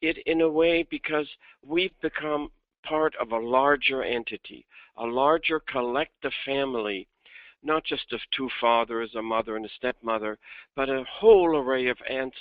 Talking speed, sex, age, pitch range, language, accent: 155 wpm, male, 60-79, 120-150 Hz, English, American